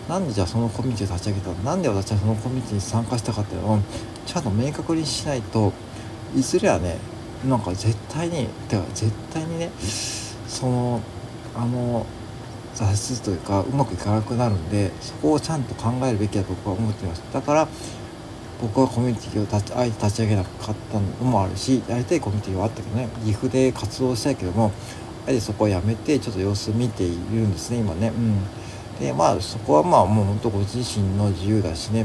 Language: Japanese